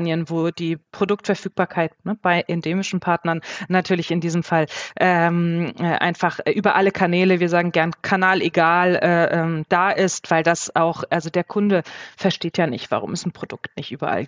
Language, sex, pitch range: German, female, 180-215 Hz